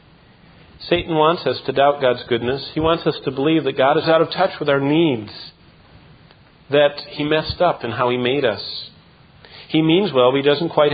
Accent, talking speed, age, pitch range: American, 205 wpm, 50-69, 125-165 Hz